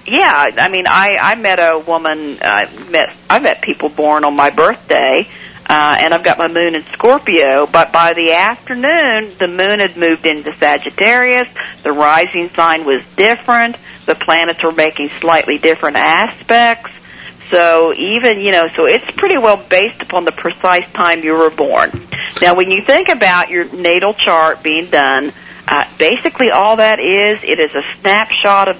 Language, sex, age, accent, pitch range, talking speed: English, female, 50-69, American, 160-210 Hz, 170 wpm